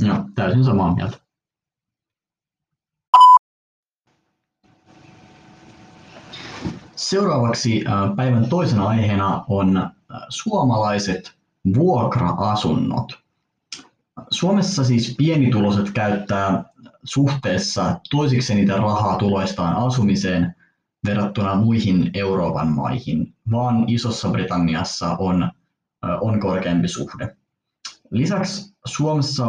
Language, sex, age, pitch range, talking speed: Finnish, male, 30-49, 95-120 Hz, 70 wpm